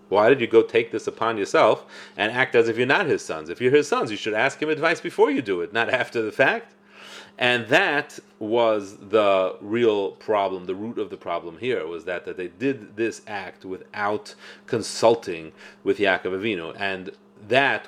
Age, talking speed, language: 30-49, 200 wpm, English